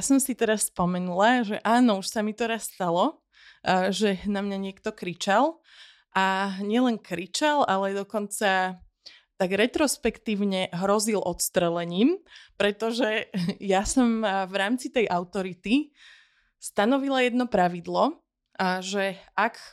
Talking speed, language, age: 115 wpm, Slovak, 20-39